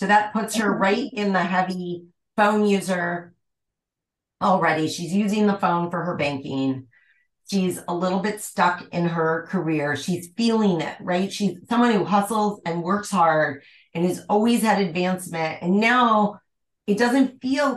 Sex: female